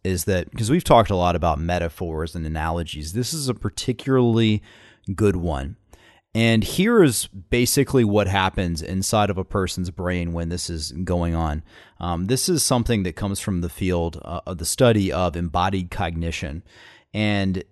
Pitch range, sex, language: 90-115 Hz, male, English